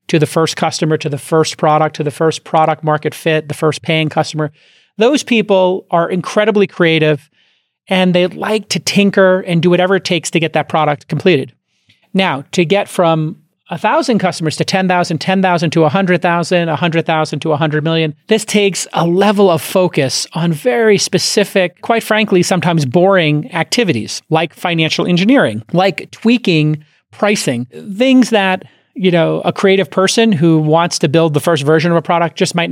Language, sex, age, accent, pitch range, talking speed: English, male, 40-59, American, 155-185 Hz, 170 wpm